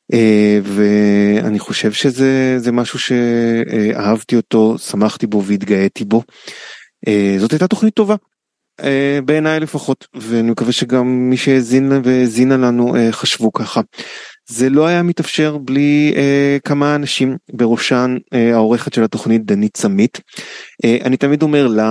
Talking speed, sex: 120 wpm, male